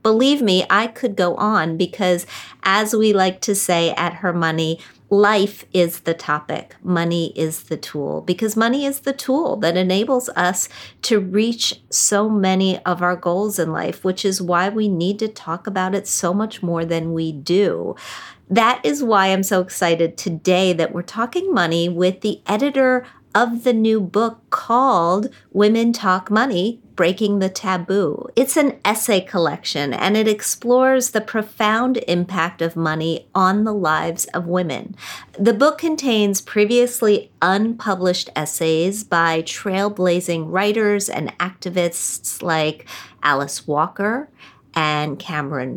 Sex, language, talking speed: female, English, 150 wpm